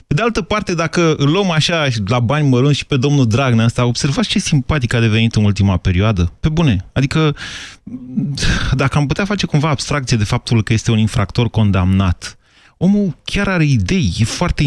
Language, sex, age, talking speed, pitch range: Romanian, male, 30-49, 185 wpm, 110-160 Hz